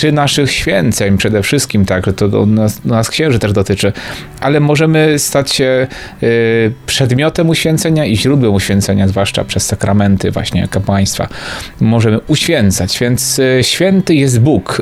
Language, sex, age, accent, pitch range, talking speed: Polish, male, 30-49, native, 105-135 Hz, 145 wpm